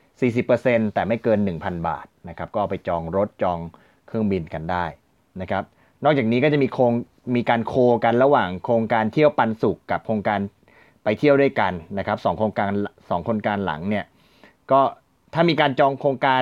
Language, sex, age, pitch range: Thai, male, 30-49, 105-130 Hz